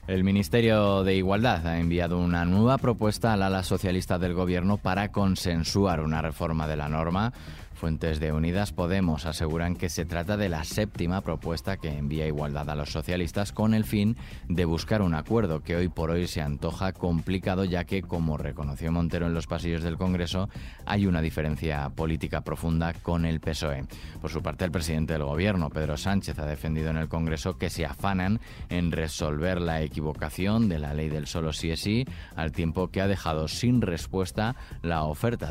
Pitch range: 80-95 Hz